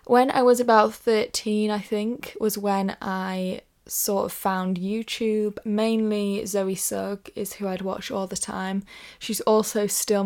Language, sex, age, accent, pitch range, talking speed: English, female, 10-29, British, 185-220 Hz, 160 wpm